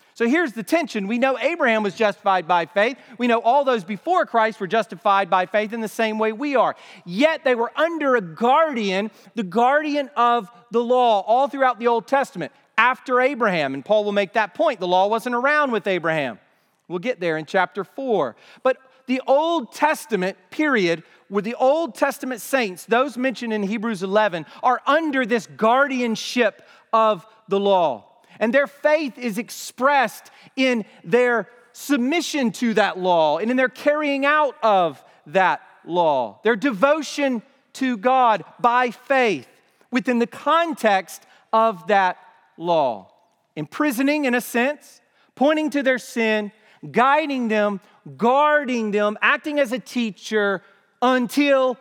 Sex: male